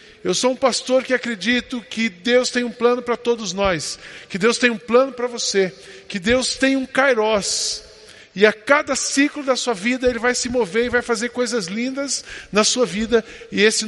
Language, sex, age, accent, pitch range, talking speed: Portuguese, male, 20-39, Brazilian, 210-245 Hz, 205 wpm